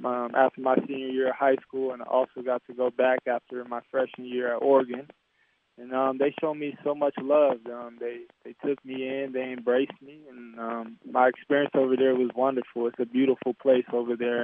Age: 20-39